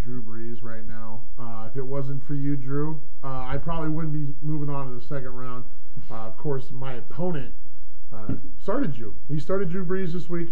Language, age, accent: English, 10-29, American